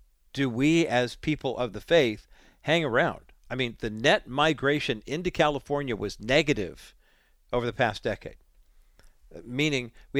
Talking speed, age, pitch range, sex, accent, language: 140 wpm, 50-69, 120-160 Hz, male, American, English